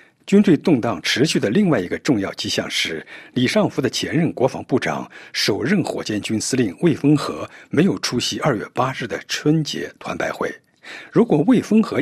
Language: Chinese